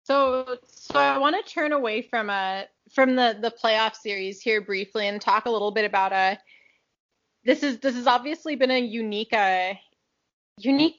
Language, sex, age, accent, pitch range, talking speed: English, female, 20-39, American, 195-255 Hz, 180 wpm